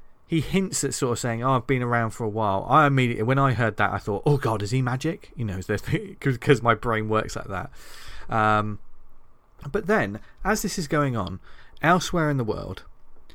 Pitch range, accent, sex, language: 105-145 Hz, British, male, English